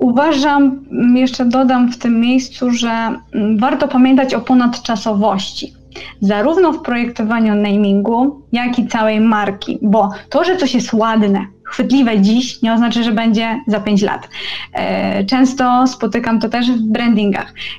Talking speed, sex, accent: 135 wpm, female, native